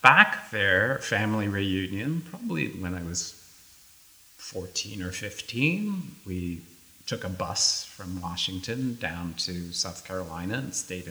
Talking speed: 125 wpm